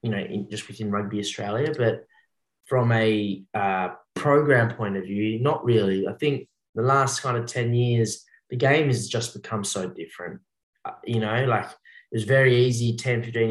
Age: 20-39